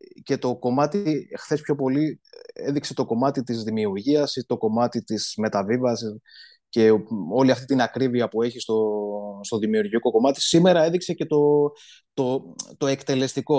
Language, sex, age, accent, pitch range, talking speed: Greek, male, 20-39, native, 115-145 Hz, 145 wpm